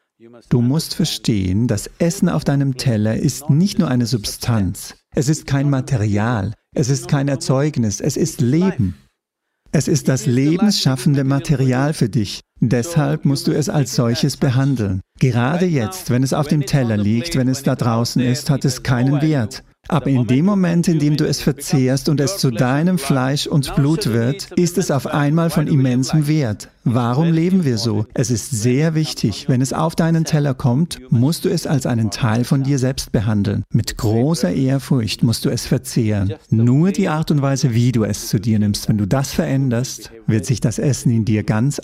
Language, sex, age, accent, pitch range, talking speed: English, male, 50-69, German, 120-155 Hz, 190 wpm